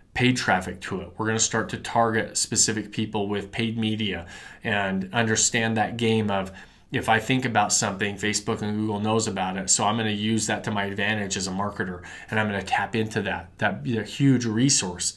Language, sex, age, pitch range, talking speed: English, male, 20-39, 105-120 Hz, 210 wpm